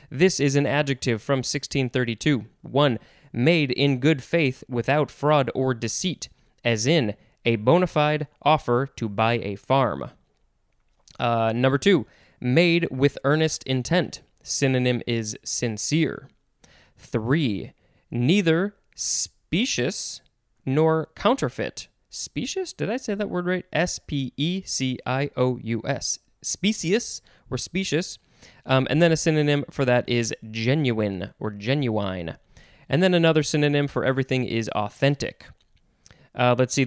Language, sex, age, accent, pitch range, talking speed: English, male, 20-39, American, 120-155 Hz, 120 wpm